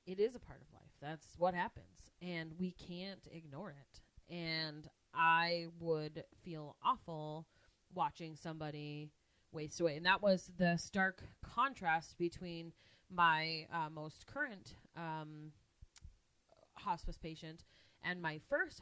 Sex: female